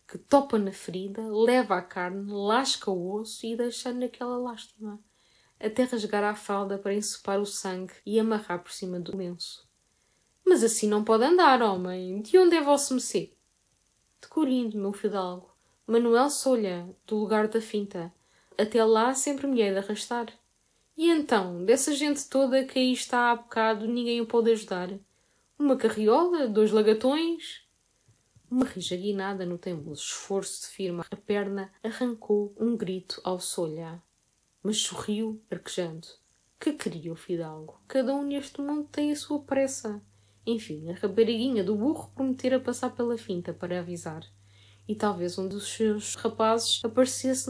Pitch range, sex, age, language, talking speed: 190-245 Hz, female, 10-29, Portuguese, 160 wpm